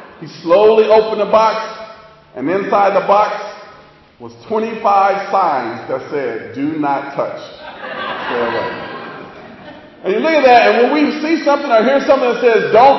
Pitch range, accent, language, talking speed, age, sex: 195-270 Hz, American, English, 160 wpm, 40-59, male